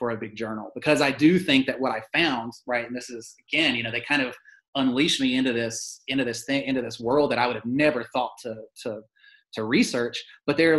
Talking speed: 245 wpm